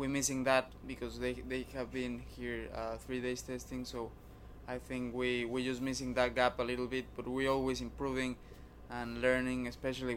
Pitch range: 115-130 Hz